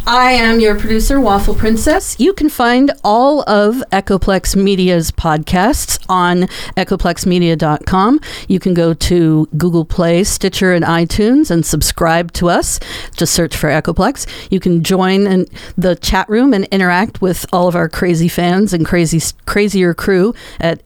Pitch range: 165-200 Hz